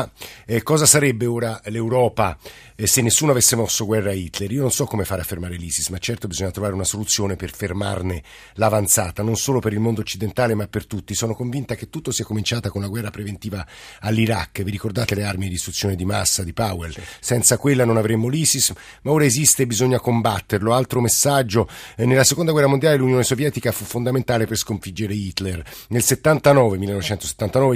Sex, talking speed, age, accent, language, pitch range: male, 190 wpm, 50-69, native, Italian, 110-130 Hz